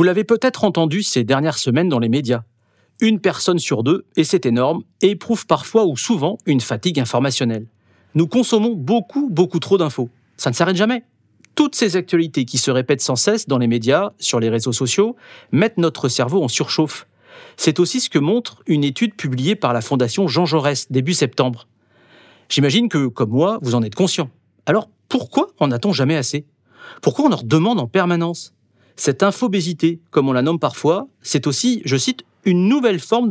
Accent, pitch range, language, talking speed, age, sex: French, 130-205 Hz, French, 185 wpm, 40-59, male